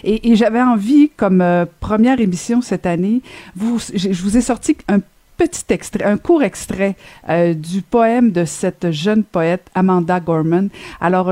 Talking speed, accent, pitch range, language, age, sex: 170 wpm, Canadian, 170-215 Hz, French, 50-69, female